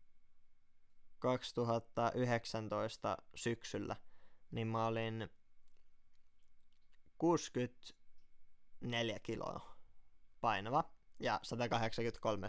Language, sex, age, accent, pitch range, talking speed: Finnish, male, 20-39, native, 110-125 Hz, 50 wpm